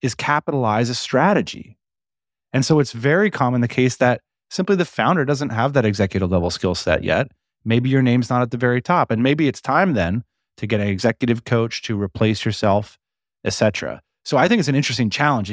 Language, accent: English, American